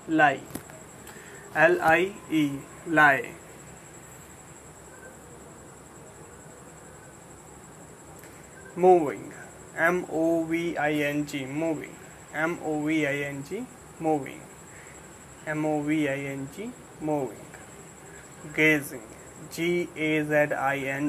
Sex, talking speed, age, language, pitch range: male, 95 wpm, 20-39, English, 145-165 Hz